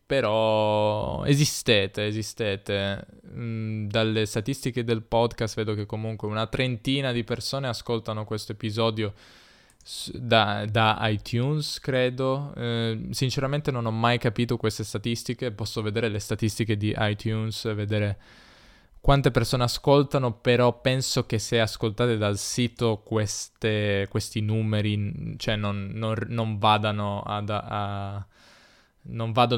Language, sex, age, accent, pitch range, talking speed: Italian, male, 10-29, native, 105-120 Hz, 120 wpm